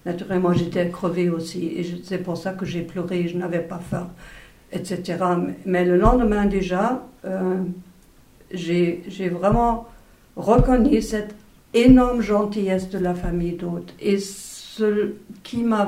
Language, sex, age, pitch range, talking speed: French, female, 60-79, 185-220 Hz, 140 wpm